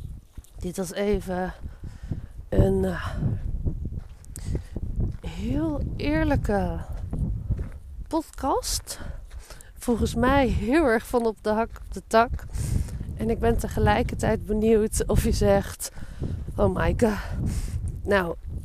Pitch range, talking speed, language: 170-225 Hz, 100 wpm, Dutch